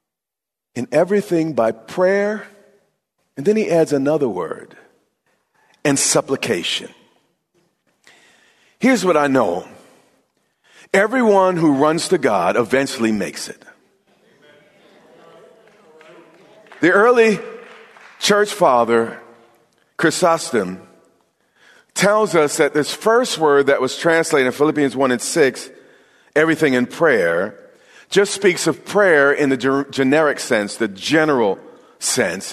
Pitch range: 130-190 Hz